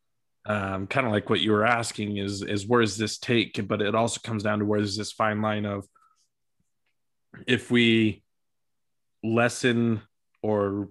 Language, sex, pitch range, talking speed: English, male, 105-115 Hz, 170 wpm